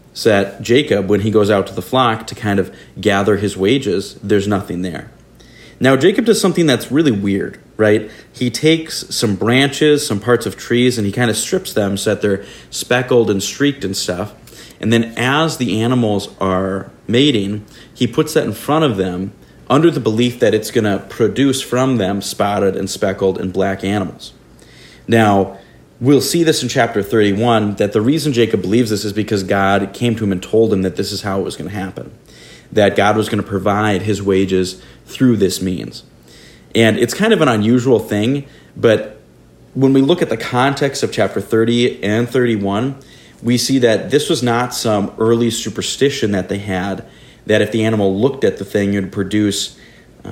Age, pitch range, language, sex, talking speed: 40-59, 100-125 Hz, English, male, 190 wpm